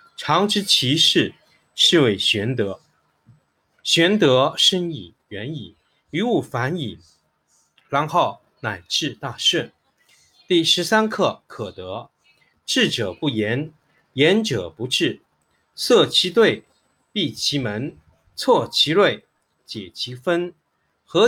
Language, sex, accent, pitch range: Chinese, male, native, 115-175 Hz